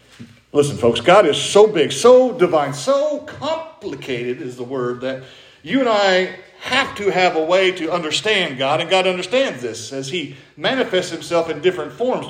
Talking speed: 175 wpm